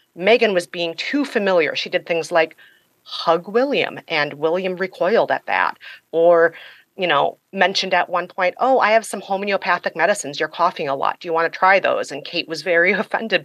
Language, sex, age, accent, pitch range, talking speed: English, female, 30-49, American, 165-205 Hz, 195 wpm